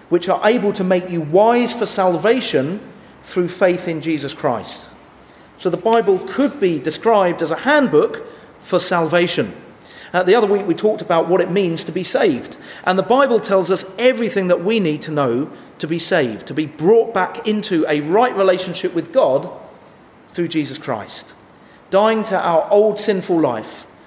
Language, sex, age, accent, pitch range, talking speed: English, male, 40-59, British, 170-215 Hz, 175 wpm